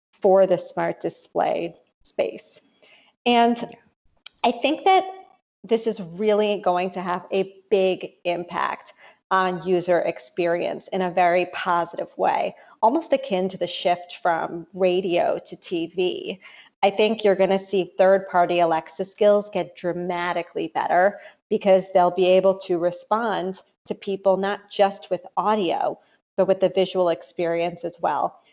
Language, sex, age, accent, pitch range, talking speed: English, female, 40-59, American, 180-210 Hz, 135 wpm